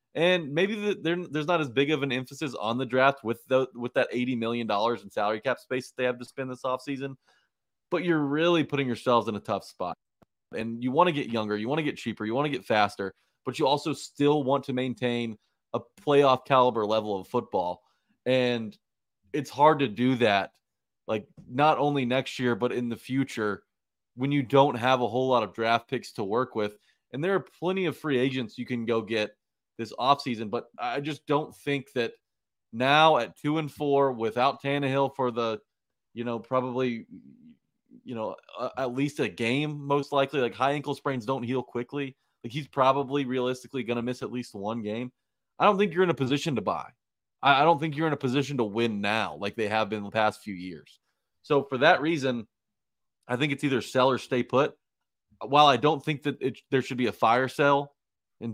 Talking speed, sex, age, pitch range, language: 215 wpm, male, 20-39, 120-145 Hz, English